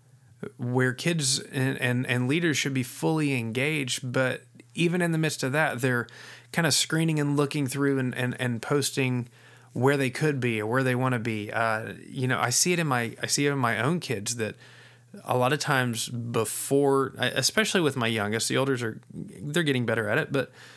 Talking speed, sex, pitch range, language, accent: 210 wpm, male, 115-140 Hz, English, American